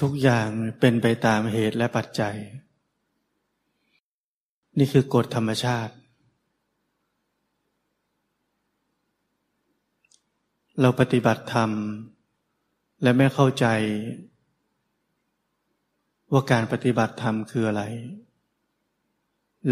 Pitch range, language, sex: 115-135 Hz, Thai, male